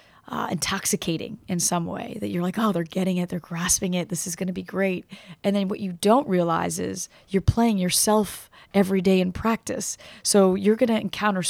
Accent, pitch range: American, 175-210 Hz